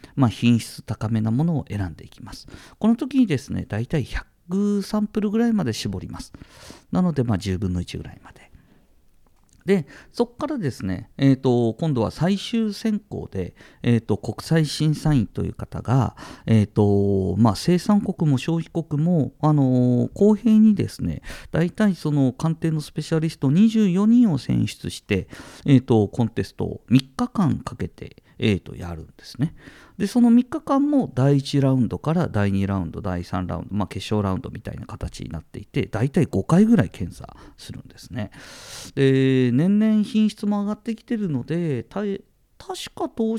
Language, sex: Japanese, male